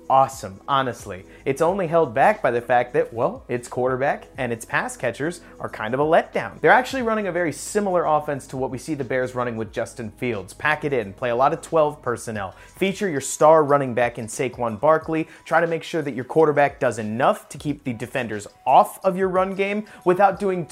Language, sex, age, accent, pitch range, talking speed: English, male, 30-49, American, 125-165 Hz, 220 wpm